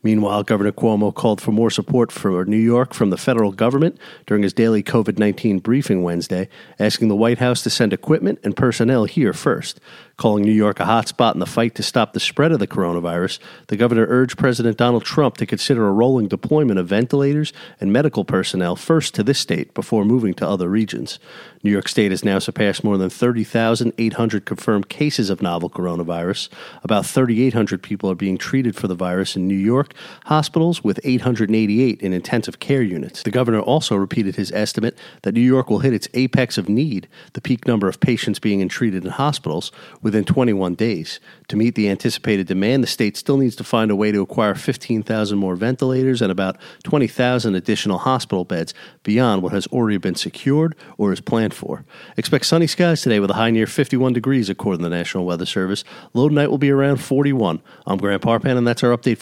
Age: 40-59